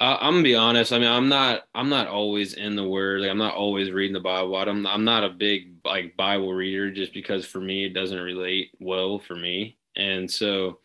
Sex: male